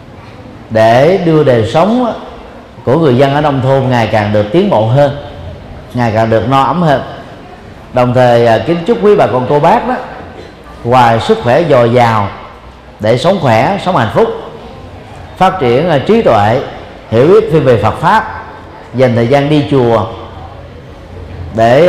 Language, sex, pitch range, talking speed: Vietnamese, male, 115-155 Hz, 160 wpm